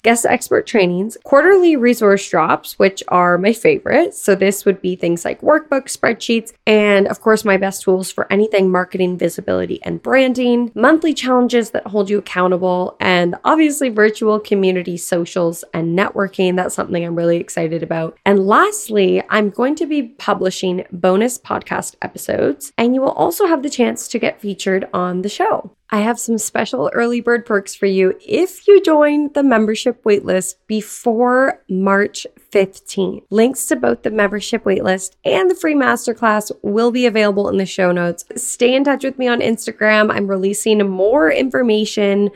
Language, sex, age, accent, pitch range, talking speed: English, female, 20-39, American, 190-245 Hz, 165 wpm